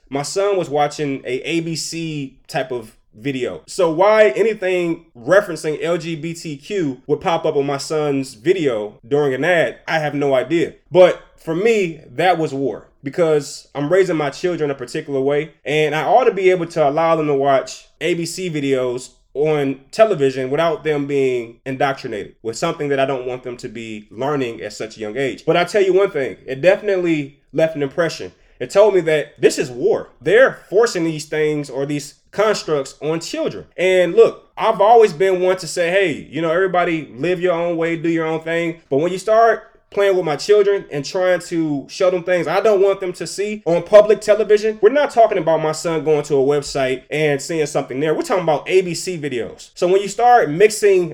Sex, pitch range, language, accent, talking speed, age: male, 145-190 Hz, English, American, 200 wpm, 20-39